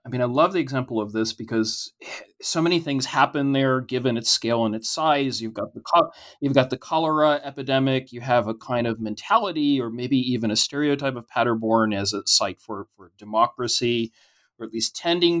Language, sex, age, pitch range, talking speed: English, male, 30-49, 115-145 Hz, 205 wpm